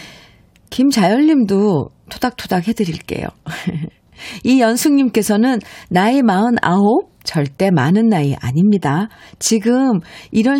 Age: 50-69